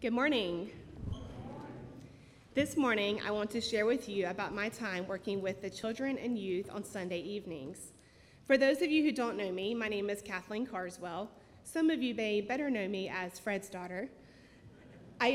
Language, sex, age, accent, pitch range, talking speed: English, female, 30-49, American, 195-235 Hz, 180 wpm